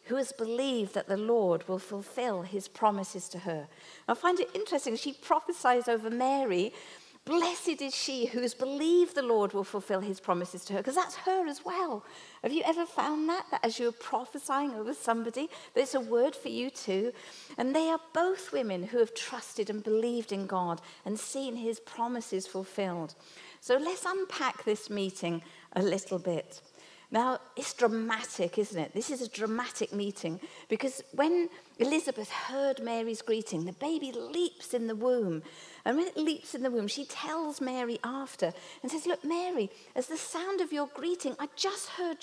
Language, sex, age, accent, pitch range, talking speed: English, female, 50-69, British, 215-320 Hz, 180 wpm